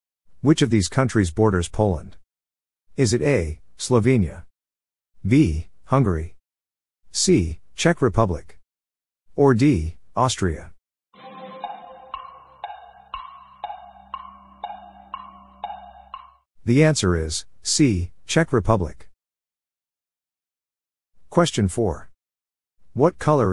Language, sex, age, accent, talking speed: English, male, 50-69, American, 70 wpm